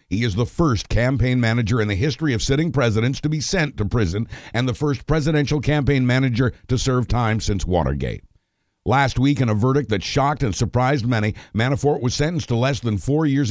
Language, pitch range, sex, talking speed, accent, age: English, 105-135 Hz, male, 205 wpm, American, 60-79